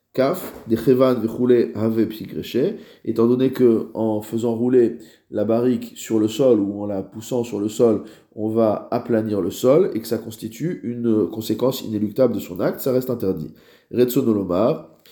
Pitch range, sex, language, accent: 110-140 Hz, male, French, French